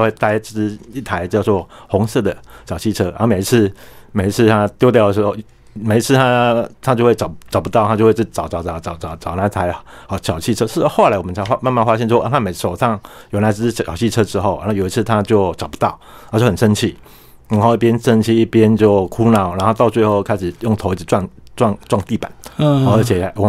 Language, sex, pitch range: Chinese, male, 100-115 Hz